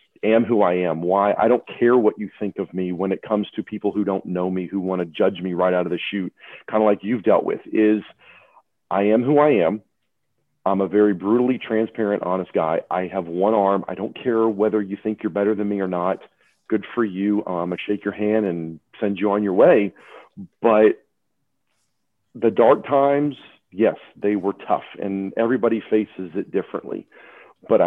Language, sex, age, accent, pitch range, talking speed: English, male, 40-59, American, 95-105 Hz, 205 wpm